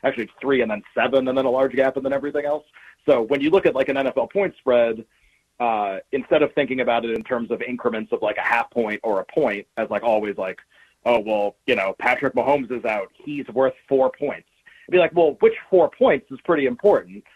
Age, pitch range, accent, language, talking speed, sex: 30-49, 120-155 Hz, American, English, 240 wpm, male